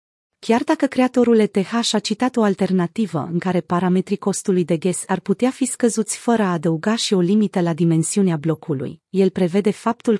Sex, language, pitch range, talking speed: female, Romanian, 180-225 Hz, 175 wpm